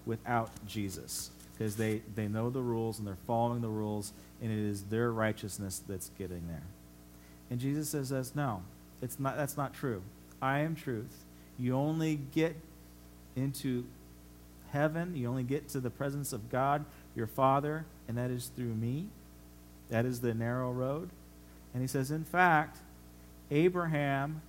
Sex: male